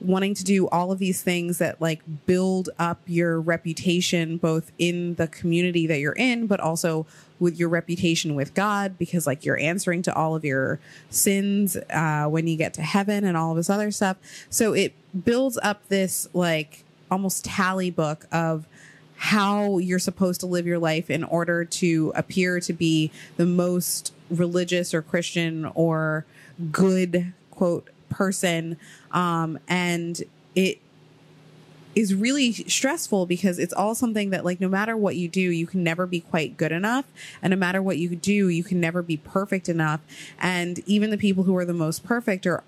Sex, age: female, 30-49